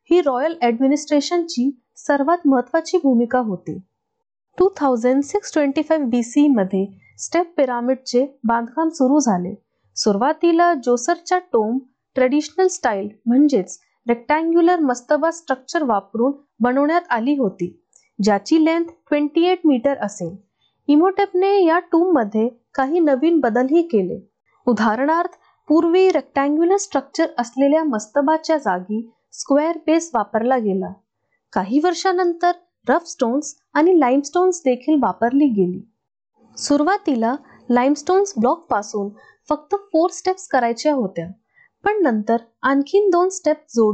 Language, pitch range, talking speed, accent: Marathi, 240-335 Hz, 40 wpm, native